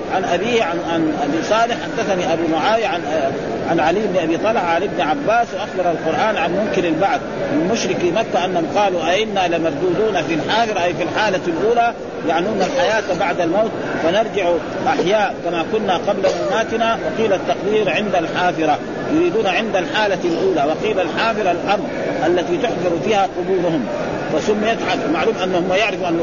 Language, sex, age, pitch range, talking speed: Arabic, male, 40-59, 175-220 Hz, 150 wpm